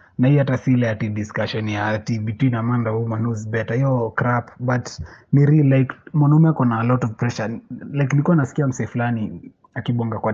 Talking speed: 180 wpm